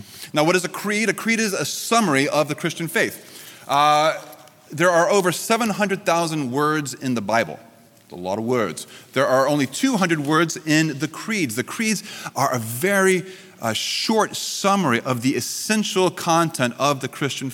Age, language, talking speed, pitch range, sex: 30-49, English, 170 wpm, 145-205 Hz, male